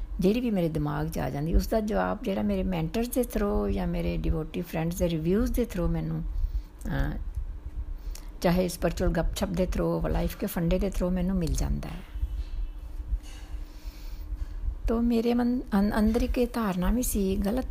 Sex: female